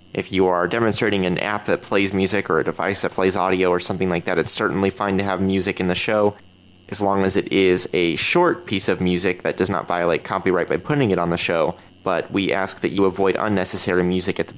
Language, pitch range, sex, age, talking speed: English, 95-110 Hz, male, 30-49, 245 wpm